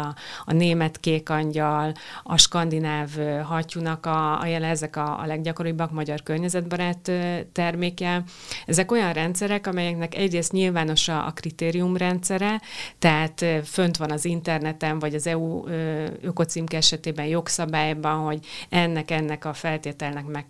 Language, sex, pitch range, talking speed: Hungarian, female, 155-175 Hz, 125 wpm